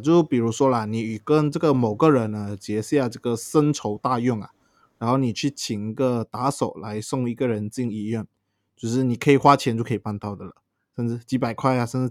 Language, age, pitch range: Chinese, 20-39, 105-135 Hz